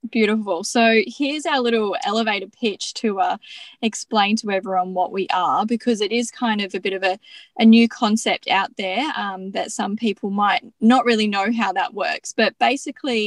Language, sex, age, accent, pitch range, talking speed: English, female, 10-29, Australian, 195-240 Hz, 190 wpm